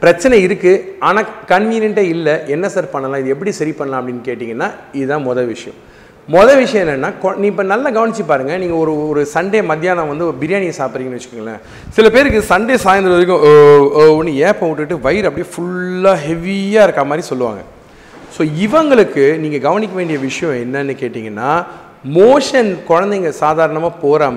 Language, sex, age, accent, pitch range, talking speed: Tamil, male, 40-59, native, 145-205 Hz, 150 wpm